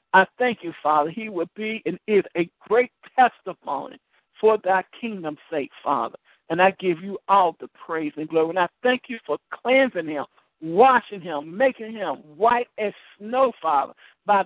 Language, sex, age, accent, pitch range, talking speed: English, male, 60-79, American, 190-290 Hz, 175 wpm